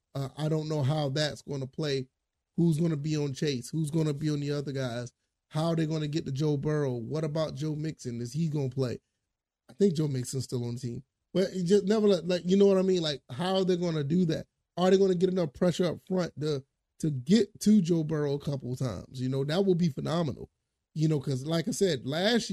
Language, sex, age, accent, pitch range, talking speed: English, male, 30-49, American, 135-170 Hz, 255 wpm